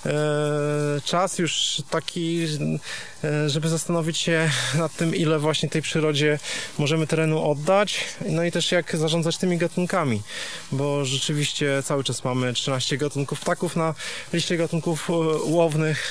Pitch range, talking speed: 135-165 Hz, 125 wpm